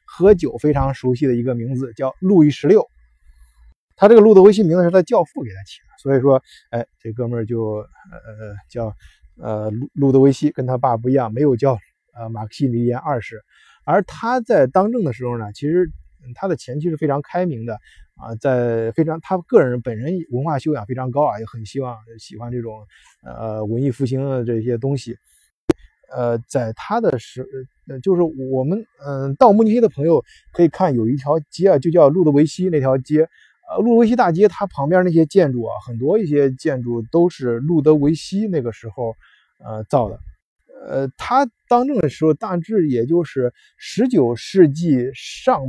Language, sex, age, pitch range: Chinese, male, 20-39, 120-170 Hz